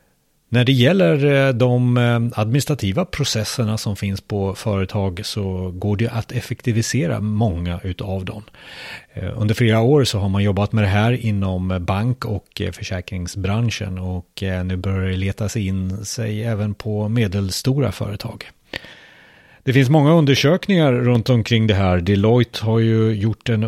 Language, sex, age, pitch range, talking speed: Swedish, male, 30-49, 100-130 Hz, 140 wpm